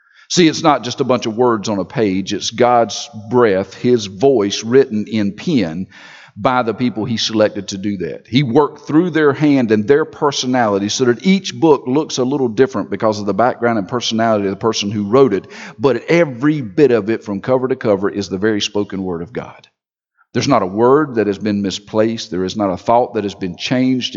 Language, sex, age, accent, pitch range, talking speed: English, male, 50-69, American, 105-150 Hz, 220 wpm